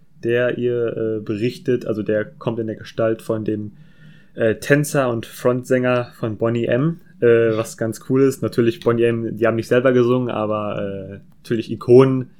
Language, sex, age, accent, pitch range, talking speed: German, male, 20-39, German, 115-135 Hz, 175 wpm